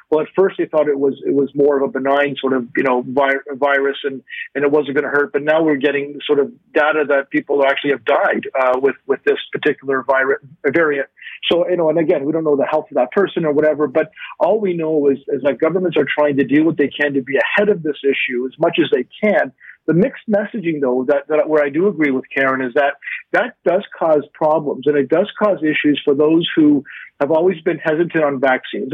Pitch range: 140-170 Hz